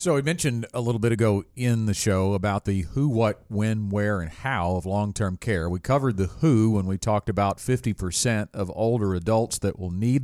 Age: 40-59